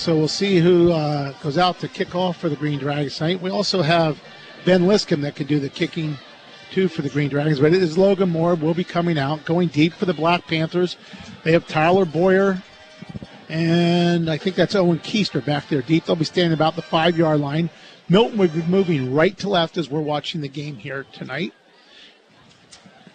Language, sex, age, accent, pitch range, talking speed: English, male, 50-69, American, 155-180 Hz, 205 wpm